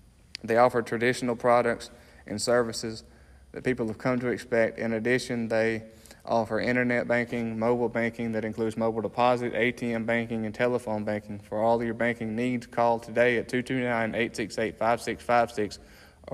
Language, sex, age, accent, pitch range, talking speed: English, male, 20-39, American, 110-125 Hz, 140 wpm